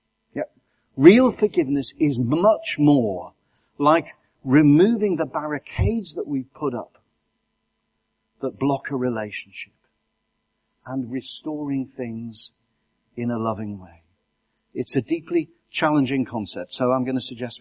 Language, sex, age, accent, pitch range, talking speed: English, male, 50-69, British, 110-130 Hz, 115 wpm